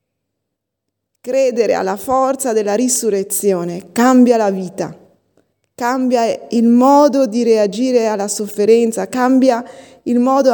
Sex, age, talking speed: female, 20-39, 105 wpm